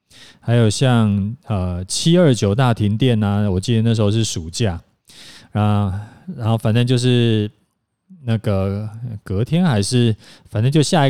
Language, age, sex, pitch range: Chinese, 20-39, male, 105-130 Hz